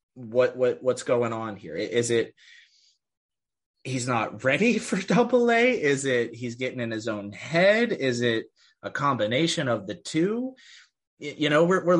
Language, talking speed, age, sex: English, 165 wpm, 30-49, male